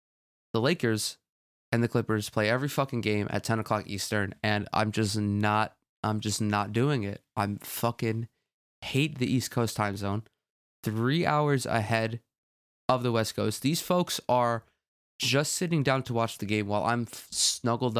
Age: 20-39